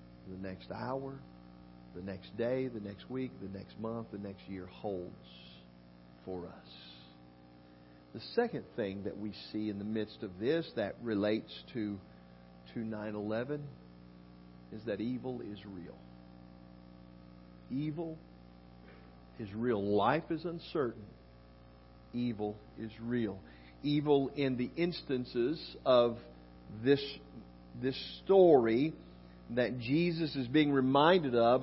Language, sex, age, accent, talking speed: English, male, 50-69, American, 120 wpm